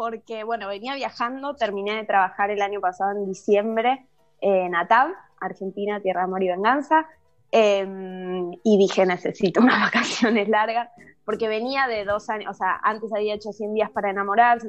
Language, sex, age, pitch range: Spanish, female, 20-39, 190-230 Hz